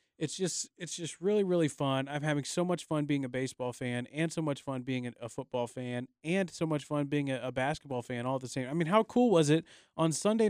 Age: 30-49